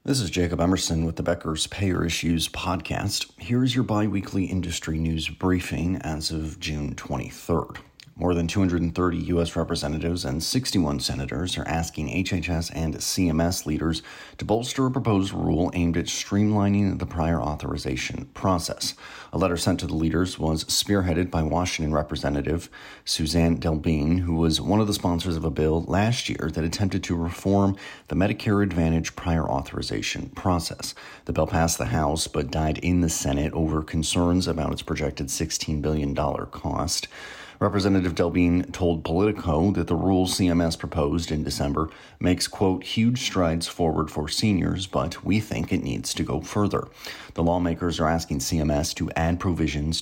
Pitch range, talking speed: 80-95 Hz, 160 wpm